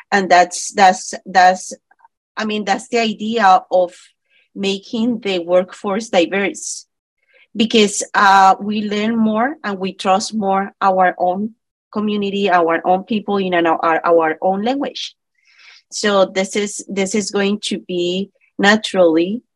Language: English